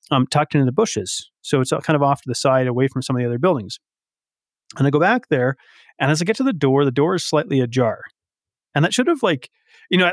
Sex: male